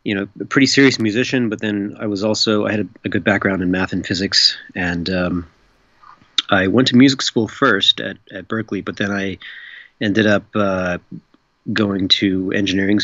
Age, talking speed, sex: 30-49, 190 wpm, male